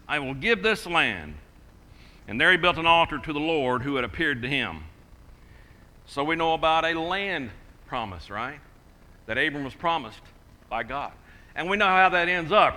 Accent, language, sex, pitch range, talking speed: American, English, male, 140-200 Hz, 190 wpm